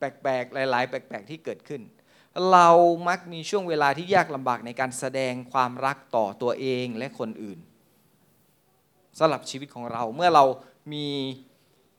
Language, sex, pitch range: Thai, male, 125-165 Hz